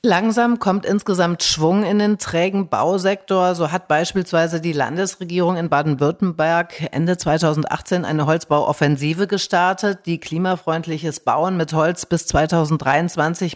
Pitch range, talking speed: 155-185 Hz, 120 wpm